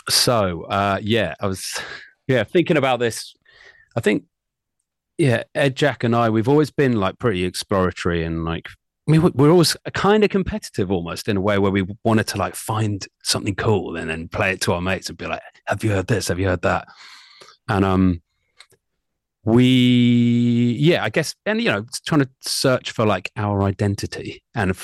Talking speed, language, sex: 190 wpm, English, male